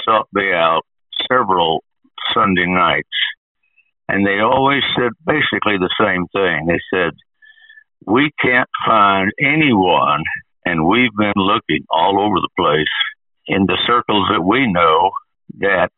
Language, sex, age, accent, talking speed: English, male, 60-79, American, 130 wpm